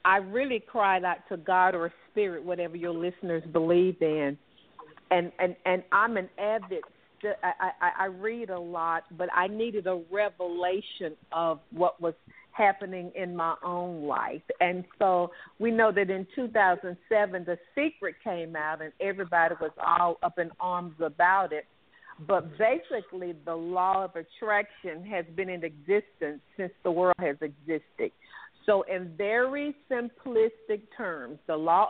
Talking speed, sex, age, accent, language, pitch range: 150 wpm, female, 50-69, American, English, 175-215 Hz